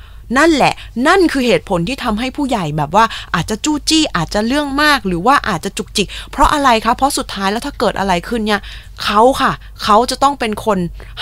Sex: female